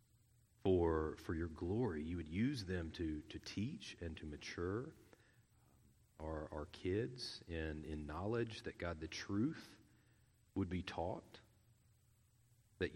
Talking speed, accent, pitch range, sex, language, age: 130 wpm, American, 85-110 Hz, male, English, 40-59